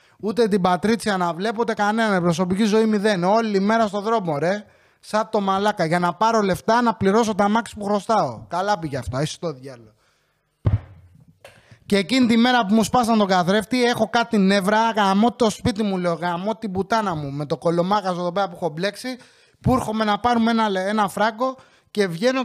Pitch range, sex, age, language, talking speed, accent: 175-230 Hz, male, 30-49, English, 200 wpm, Greek